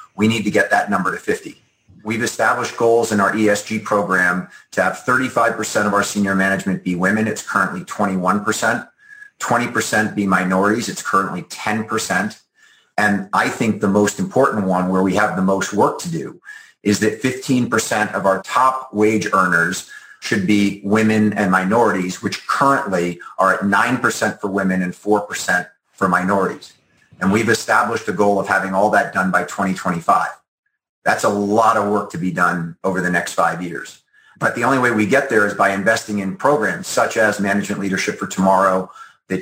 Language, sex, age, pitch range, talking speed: English, male, 40-59, 95-110 Hz, 175 wpm